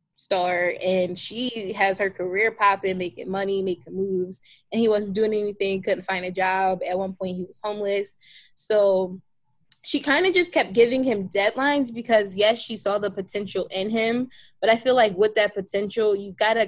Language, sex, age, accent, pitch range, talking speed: English, female, 20-39, American, 185-225 Hz, 185 wpm